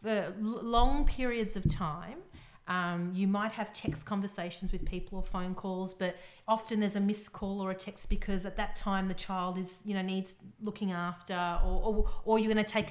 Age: 40-59